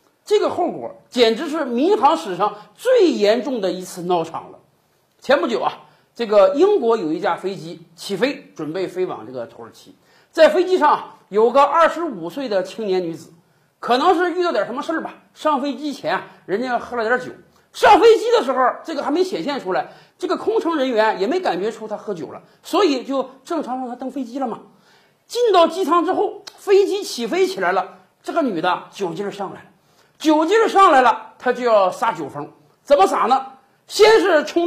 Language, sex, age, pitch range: Chinese, male, 50-69, 225-355 Hz